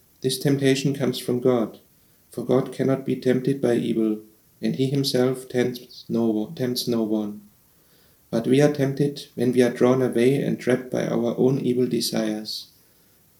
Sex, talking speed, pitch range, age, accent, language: male, 155 wpm, 115-135 Hz, 40-59, German, English